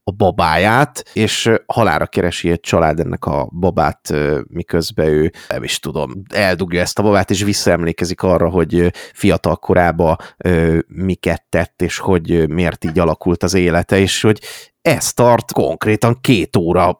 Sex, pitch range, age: male, 90-115 Hz, 30-49